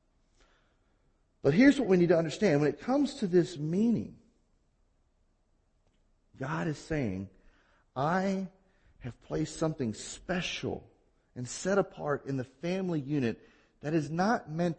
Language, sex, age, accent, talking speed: English, male, 40-59, American, 130 wpm